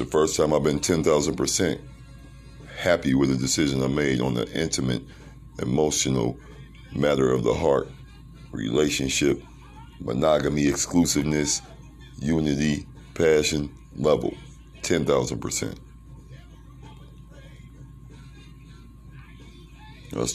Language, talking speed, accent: English, 85 wpm, American